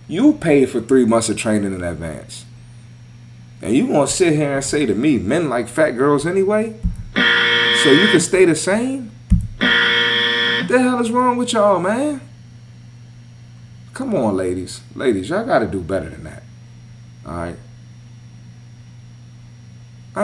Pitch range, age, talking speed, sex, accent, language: 100-130 Hz, 30-49, 150 wpm, male, American, English